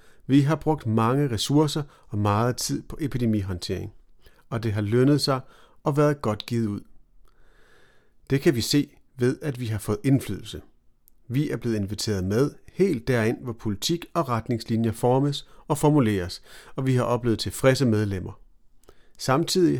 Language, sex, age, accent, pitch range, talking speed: Danish, male, 40-59, native, 105-140 Hz, 155 wpm